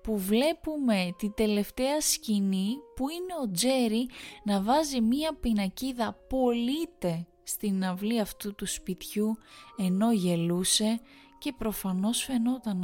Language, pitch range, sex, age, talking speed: Greek, 185-240 Hz, female, 20-39, 110 wpm